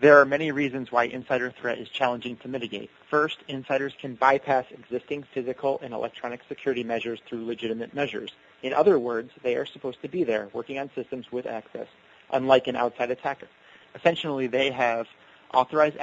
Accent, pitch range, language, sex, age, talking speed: American, 115-135 Hz, English, male, 30-49, 170 wpm